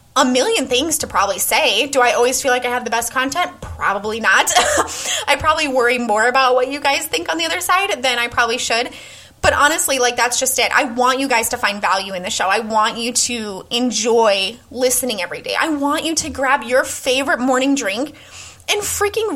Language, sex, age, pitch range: English, female, 20-39, 235-305 Hz